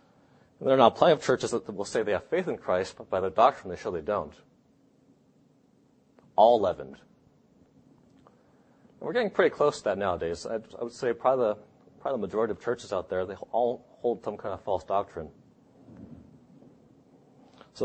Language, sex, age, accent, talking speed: English, male, 30-49, American, 170 wpm